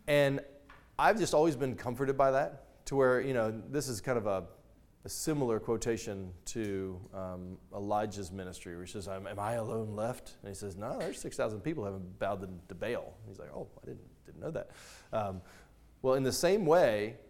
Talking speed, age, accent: 195 wpm, 20-39, American